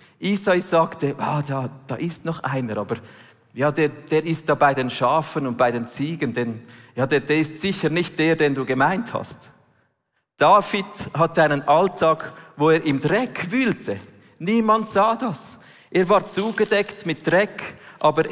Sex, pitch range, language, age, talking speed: male, 130-165 Hz, German, 40-59, 165 wpm